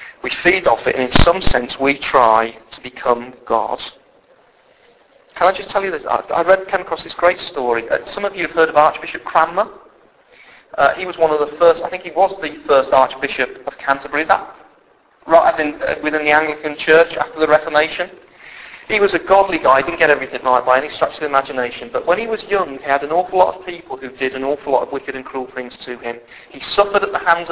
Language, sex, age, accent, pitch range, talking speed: English, male, 40-59, British, 140-190 Hz, 235 wpm